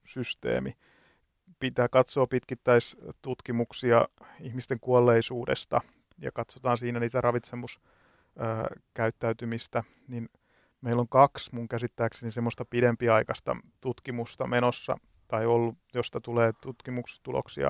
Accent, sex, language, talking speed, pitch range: native, male, Finnish, 90 wpm, 110-120 Hz